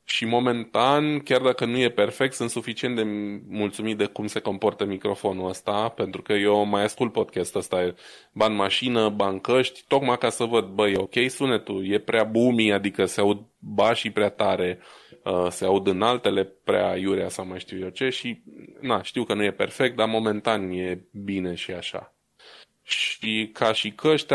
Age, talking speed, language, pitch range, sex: 20-39, 175 wpm, Romanian, 100-115 Hz, male